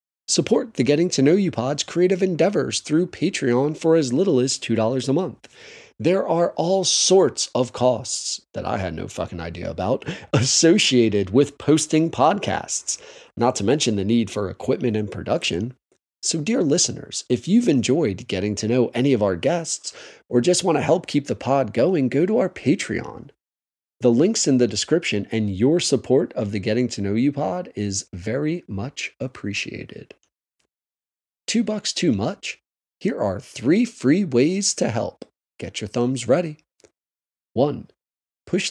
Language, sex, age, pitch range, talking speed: English, male, 30-49, 105-155 Hz, 165 wpm